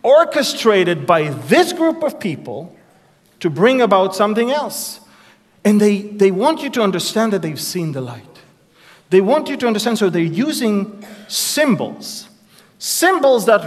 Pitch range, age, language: 190-245 Hz, 40-59, English